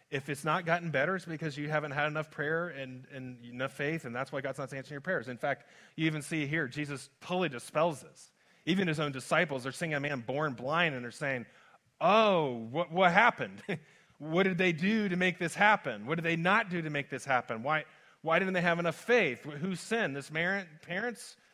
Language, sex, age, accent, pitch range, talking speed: English, male, 30-49, American, 150-195 Hz, 225 wpm